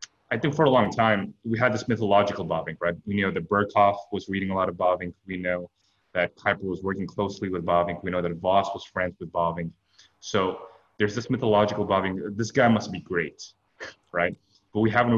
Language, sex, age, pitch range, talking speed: English, male, 20-39, 90-105 Hz, 210 wpm